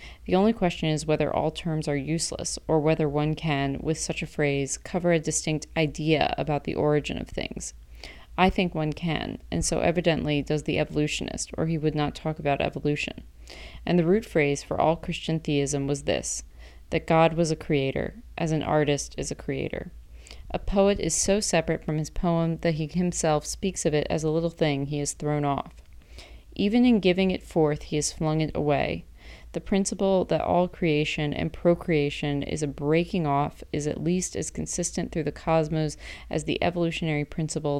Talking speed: 190 wpm